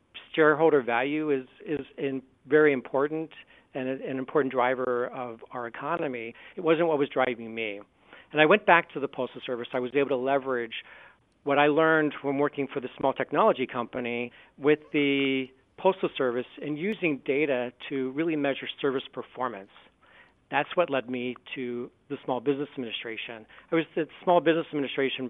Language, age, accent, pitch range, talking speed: English, 50-69, American, 125-150 Hz, 165 wpm